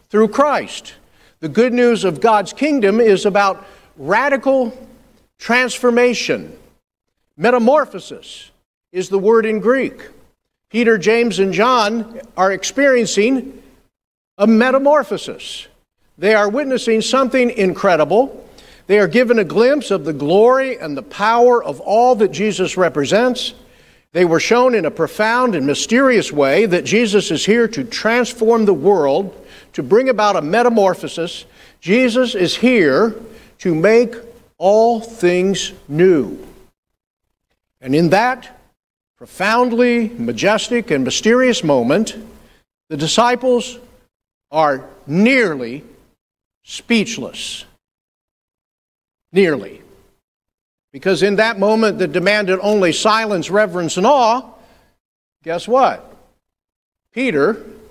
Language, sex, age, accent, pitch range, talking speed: English, male, 50-69, American, 190-245 Hz, 110 wpm